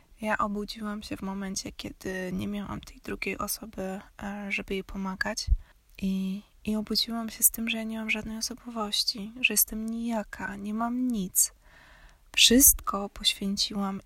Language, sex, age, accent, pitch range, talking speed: Polish, female, 20-39, native, 190-220 Hz, 145 wpm